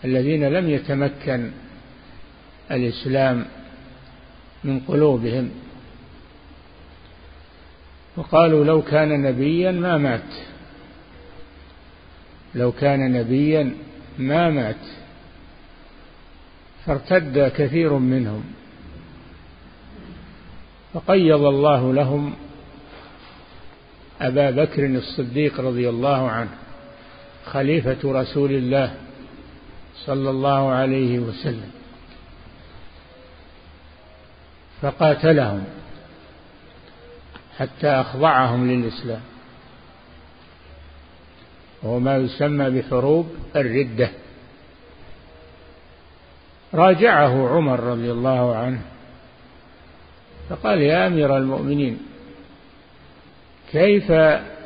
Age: 50-69